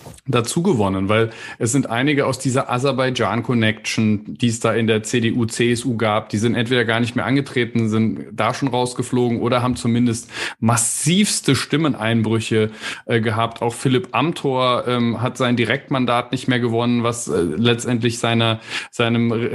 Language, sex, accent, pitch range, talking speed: German, male, German, 120-135 Hz, 150 wpm